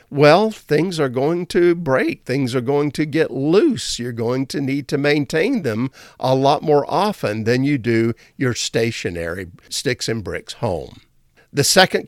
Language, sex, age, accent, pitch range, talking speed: English, male, 50-69, American, 135-200 Hz, 170 wpm